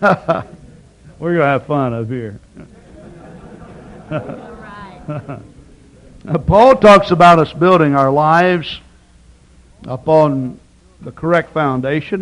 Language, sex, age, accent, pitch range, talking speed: English, male, 60-79, American, 110-145 Hz, 90 wpm